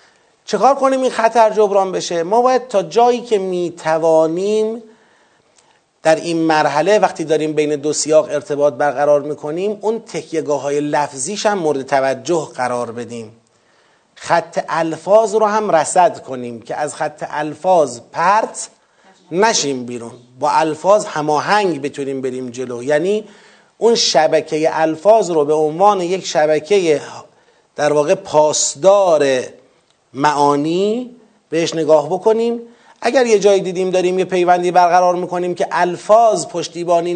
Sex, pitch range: male, 155-215 Hz